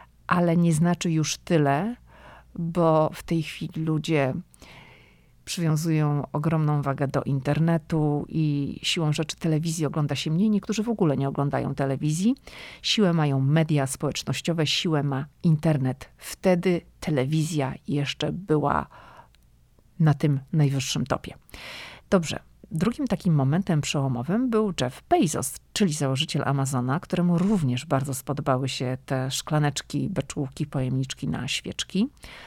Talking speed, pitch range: 120 wpm, 135-170 Hz